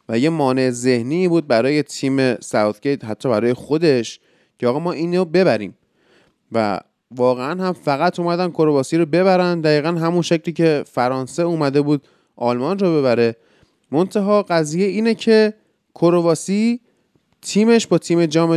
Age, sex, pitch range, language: 30-49, male, 130-180 Hz, Persian